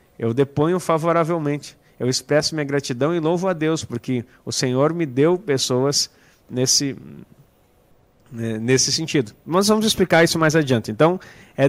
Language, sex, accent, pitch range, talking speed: Portuguese, male, Brazilian, 135-185 Hz, 145 wpm